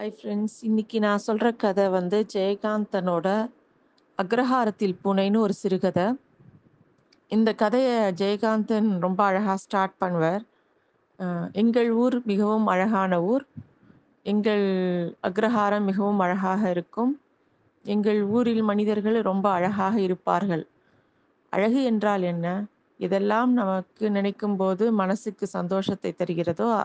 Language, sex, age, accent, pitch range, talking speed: Tamil, female, 30-49, native, 190-225 Hz, 100 wpm